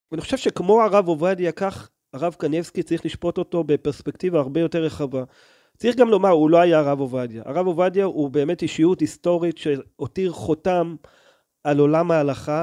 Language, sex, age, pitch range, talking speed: Hebrew, male, 40-59, 155-195 Hz, 160 wpm